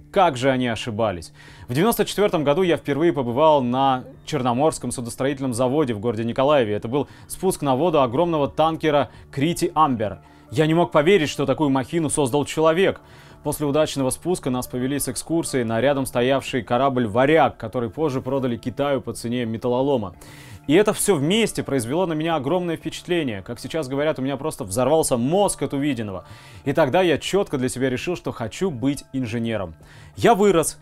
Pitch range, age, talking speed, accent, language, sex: 125-160 Hz, 20-39, 165 wpm, native, Russian, male